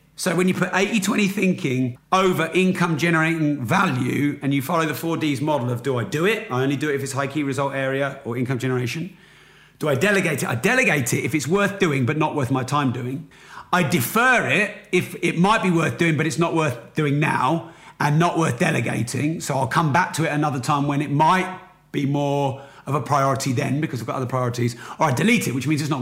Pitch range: 135-170 Hz